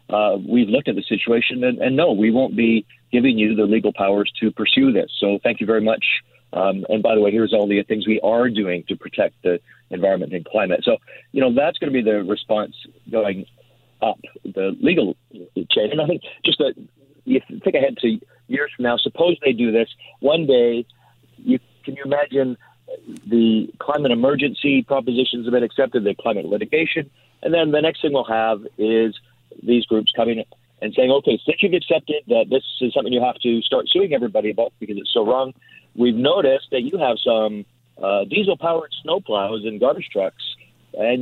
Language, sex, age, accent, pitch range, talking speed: English, male, 50-69, American, 110-150 Hz, 195 wpm